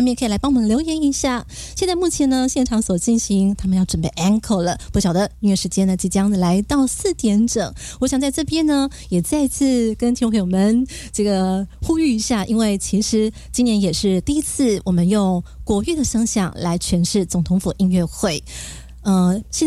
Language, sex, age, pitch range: Chinese, female, 20-39, 185-240 Hz